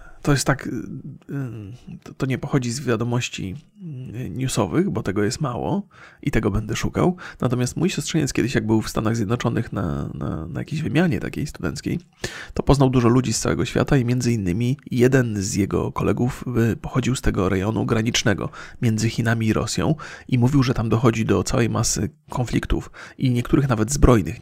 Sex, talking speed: male, 170 wpm